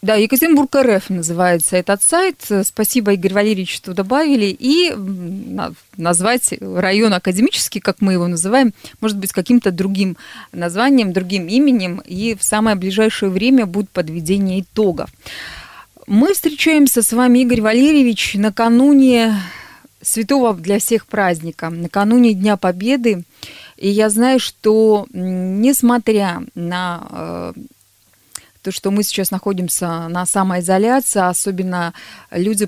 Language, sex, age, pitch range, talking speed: Russian, female, 20-39, 180-230 Hz, 115 wpm